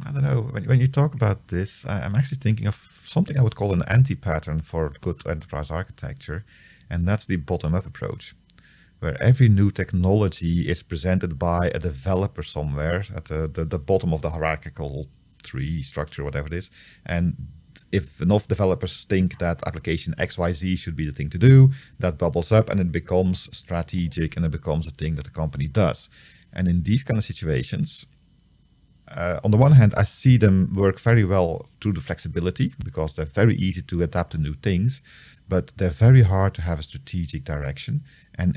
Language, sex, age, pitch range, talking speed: English, male, 40-59, 85-110 Hz, 185 wpm